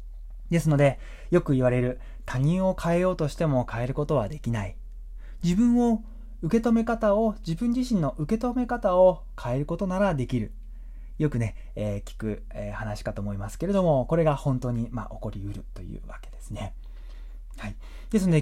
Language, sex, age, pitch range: Japanese, male, 20-39, 105-170 Hz